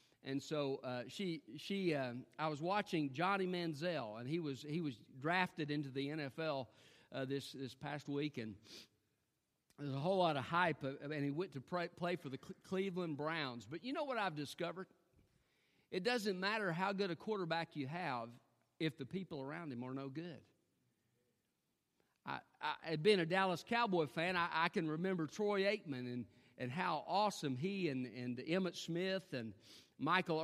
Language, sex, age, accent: English, male, 50-69, American